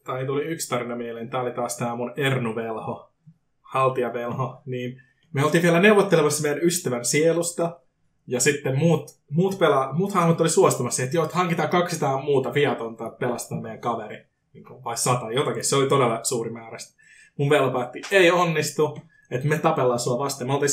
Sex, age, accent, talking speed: male, 20-39, native, 160 wpm